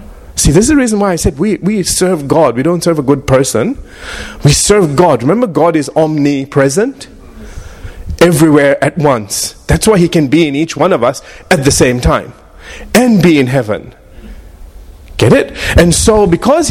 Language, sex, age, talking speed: English, male, 30-49, 185 wpm